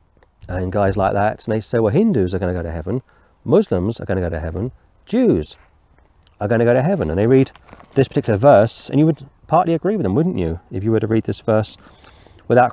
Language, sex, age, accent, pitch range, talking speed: English, male, 40-59, British, 95-150 Hz, 245 wpm